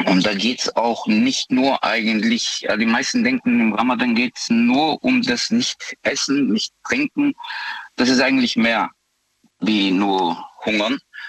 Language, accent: German, German